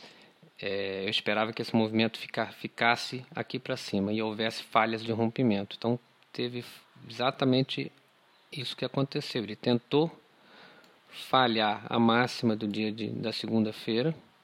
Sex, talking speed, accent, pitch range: male, 120 wpm, Brazilian, 110-135 Hz